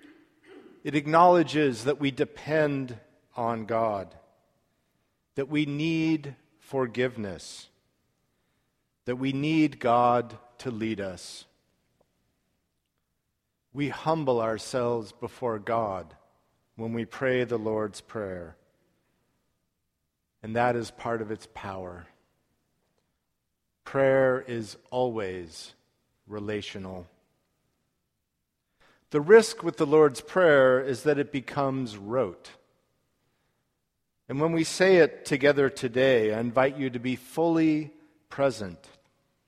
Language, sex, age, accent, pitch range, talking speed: English, male, 50-69, American, 110-150 Hz, 100 wpm